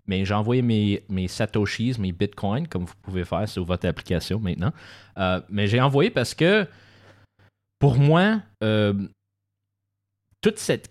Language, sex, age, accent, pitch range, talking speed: French, male, 30-49, Canadian, 95-120 Hz, 150 wpm